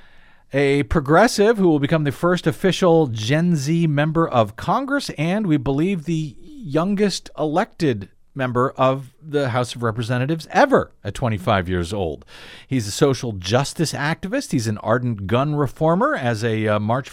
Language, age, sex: English, 50-69, male